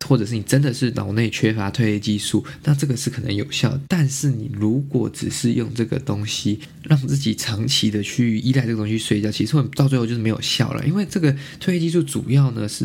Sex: male